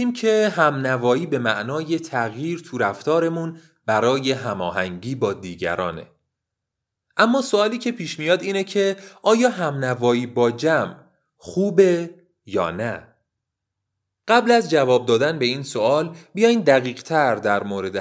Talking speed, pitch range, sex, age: 125 wpm, 115-180 Hz, male, 30-49